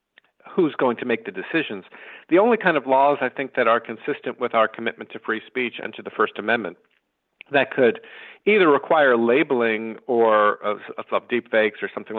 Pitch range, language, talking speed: 110-130 Hz, English, 190 wpm